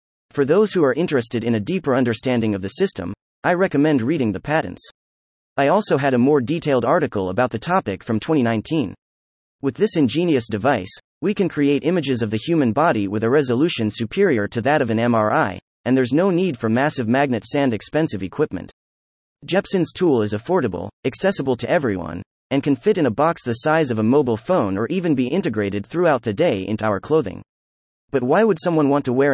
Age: 30-49